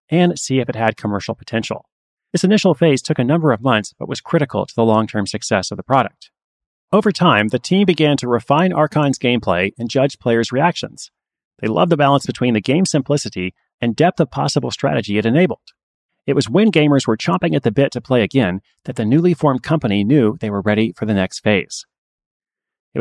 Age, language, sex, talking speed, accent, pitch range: 30-49, English, male, 205 wpm, American, 110-155 Hz